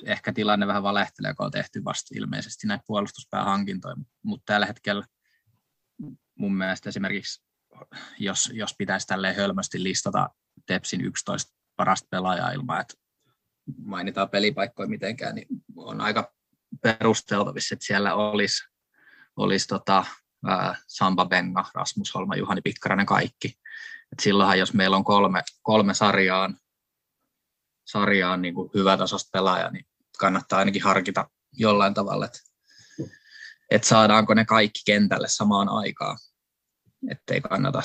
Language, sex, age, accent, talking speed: Finnish, male, 20-39, native, 120 wpm